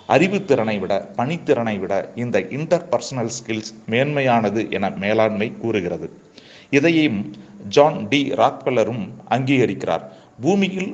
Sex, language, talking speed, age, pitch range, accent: male, Tamil, 100 wpm, 40-59, 110-135 Hz, native